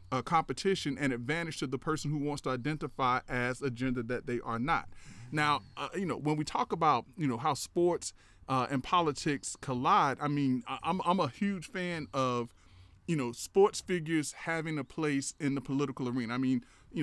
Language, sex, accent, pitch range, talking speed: English, male, American, 130-155 Hz, 195 wpm